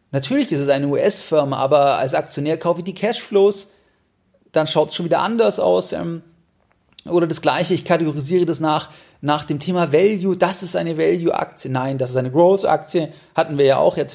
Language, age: German, 40-59